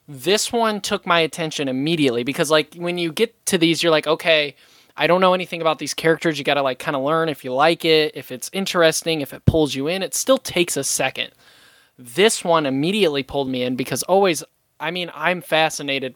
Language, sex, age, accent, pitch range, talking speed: English, male, 20-39, American, 135-170 Hz, 220 wpm